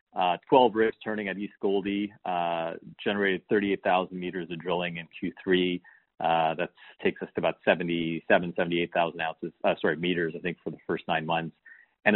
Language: English